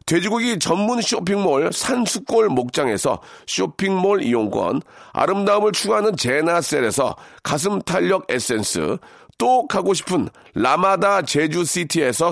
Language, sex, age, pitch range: Korean, male, 40-59, 180-230 Hz